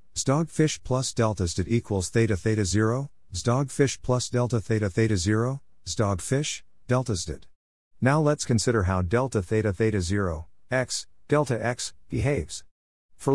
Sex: male